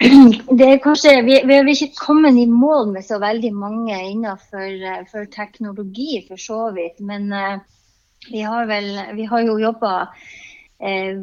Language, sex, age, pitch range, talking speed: English, female, 30-49, 185-230 Hz, 175 wpm